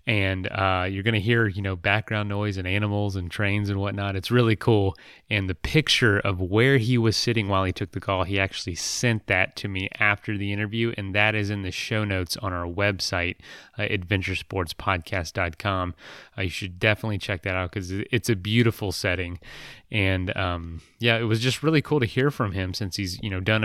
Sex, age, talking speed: male, 30-49, 205 wpm